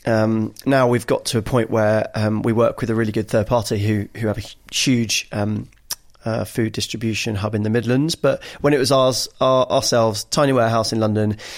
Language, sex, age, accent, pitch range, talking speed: English, male, 30-49, British, 110-130 Hz, 210 wpm